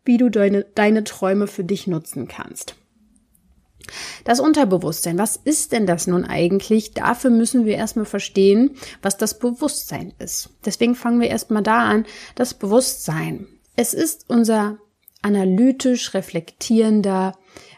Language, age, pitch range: German, 30-49, 190-230 Hz